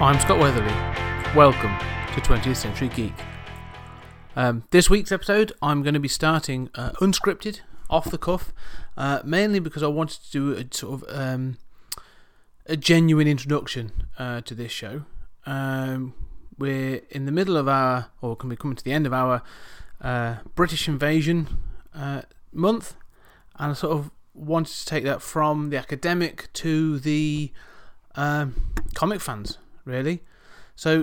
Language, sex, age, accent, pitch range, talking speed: English, male, 30-49, British, 125-150 Hz, 155 wpm